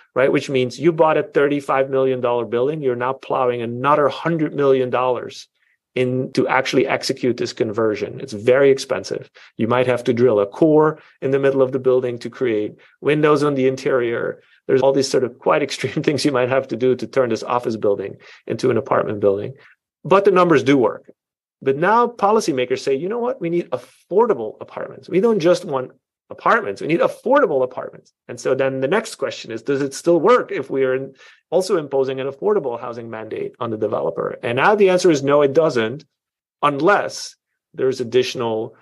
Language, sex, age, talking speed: English, male, 30-49, 190 wpm